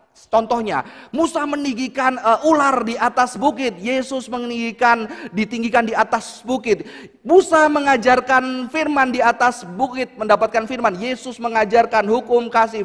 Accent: native